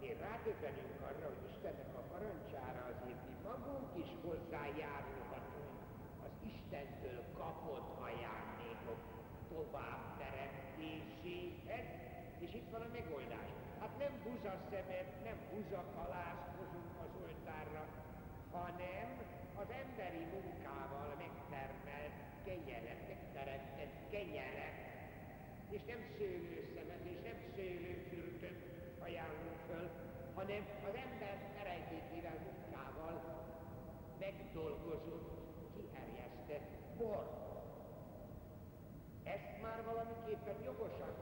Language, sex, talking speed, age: Hungarian, male, 85 wpm, 60-79